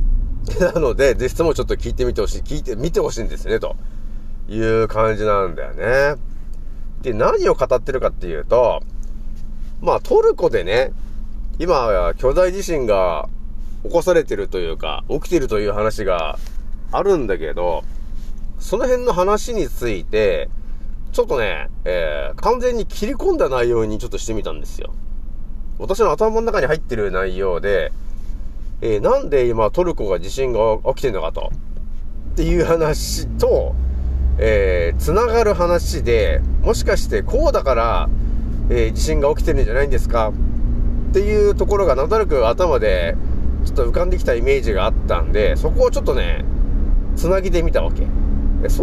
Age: 30-49